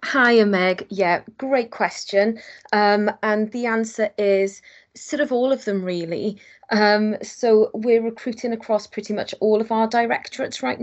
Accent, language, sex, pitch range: British, English, female, 185-225 Hz